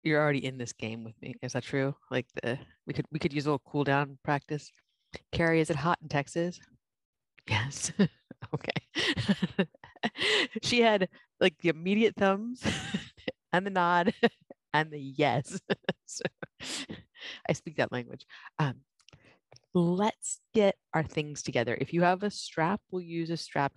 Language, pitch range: English, 130-175 Hz